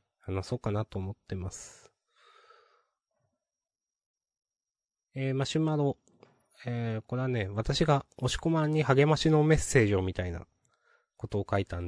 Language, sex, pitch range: Japanese, male, 100-155 Hz